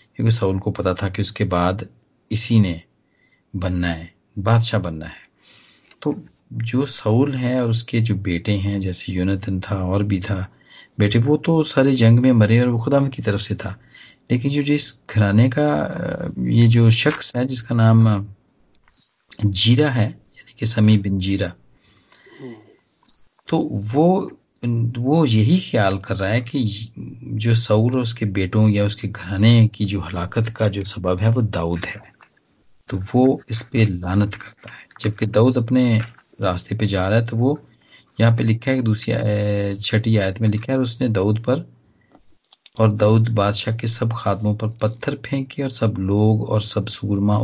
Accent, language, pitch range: native, Hindi, 100-120 Hz